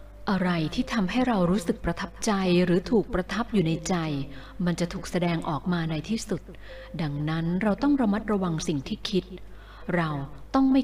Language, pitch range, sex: Thai, 165-220 Hz, female